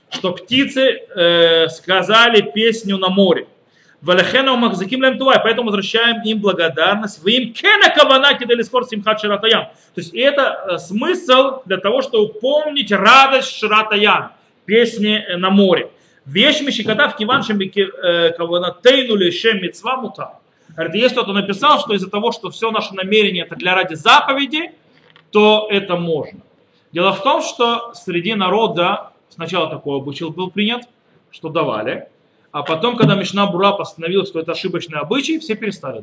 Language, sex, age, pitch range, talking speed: Russian, male, 40-59, 165-230 Hz, 120 wpm